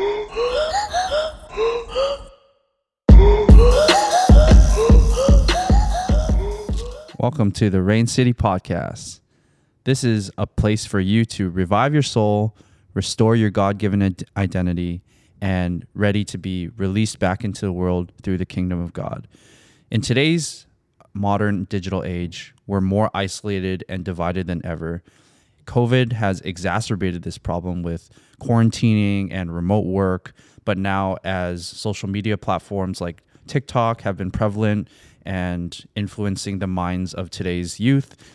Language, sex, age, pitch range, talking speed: English, male, 20-39, 95-110 Hz, 115 wpm